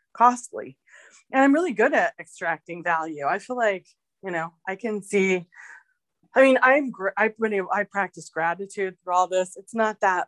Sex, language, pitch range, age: female, English, 165-205 Hz, 20-39